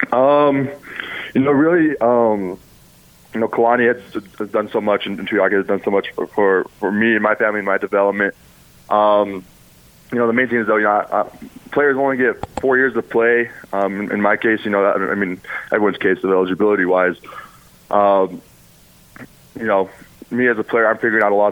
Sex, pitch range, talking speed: male, 95-115 Hz, 200 wpm